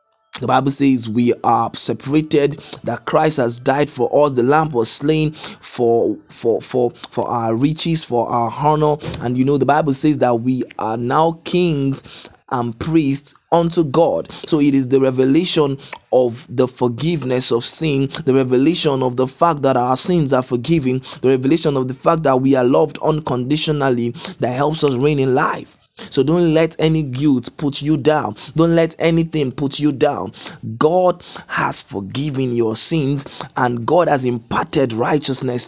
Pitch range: 125-155 Hz